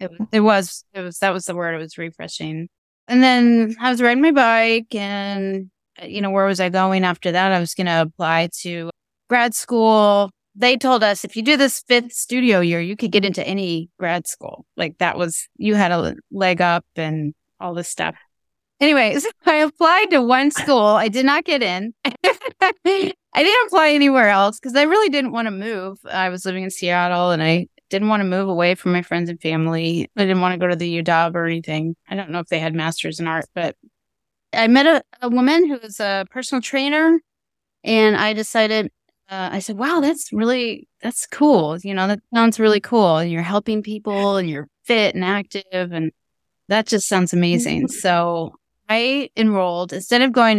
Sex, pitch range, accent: female, 175-245 Hz, American